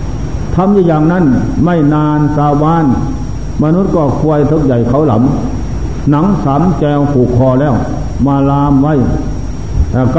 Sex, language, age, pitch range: male, Thai, 60-79, 120-165 Hz